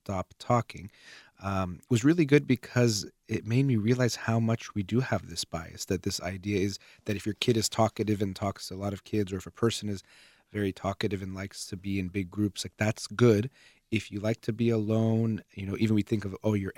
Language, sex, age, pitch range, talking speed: English, male, 30-49, 95-115 Hz, 235 wpm